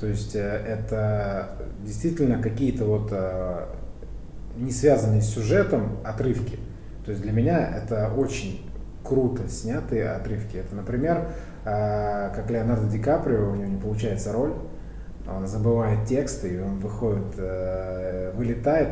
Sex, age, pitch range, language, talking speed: male, 20-39, 95-115 Hz, Russian, 120 wpm